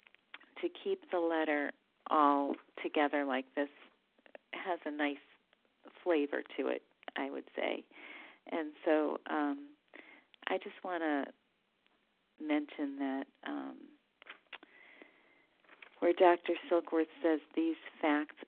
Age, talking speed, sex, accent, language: 40-59, 105 wpm, female, American, English